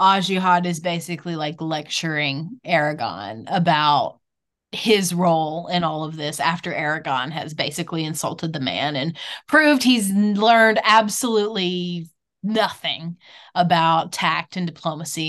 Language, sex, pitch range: English, female, 160-200 Hz